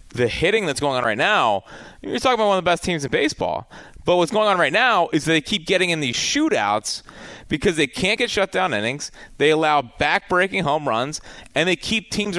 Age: 30-49